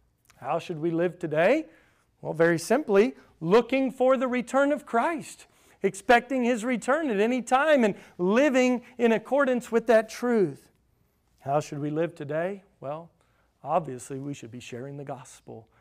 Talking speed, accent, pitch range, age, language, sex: 150 wpm, American, 145-205 Hz, 40-59, English, male